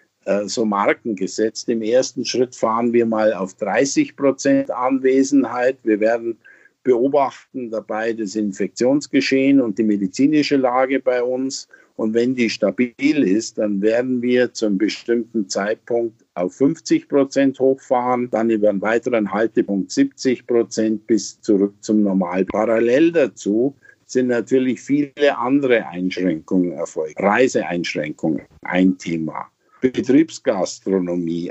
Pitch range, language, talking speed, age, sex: 110-135 Hz, German, 120 wpm, 50-69, male